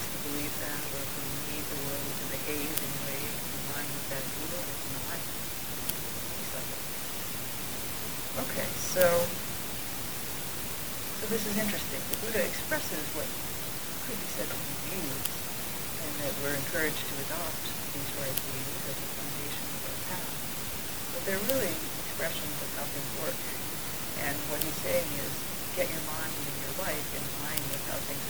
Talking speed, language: 160 wpm, English